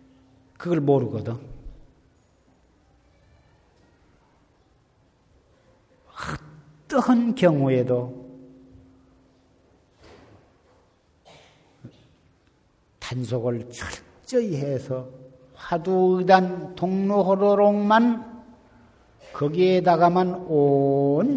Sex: male